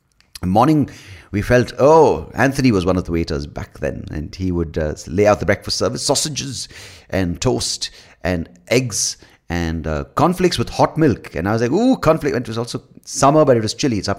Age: 30-49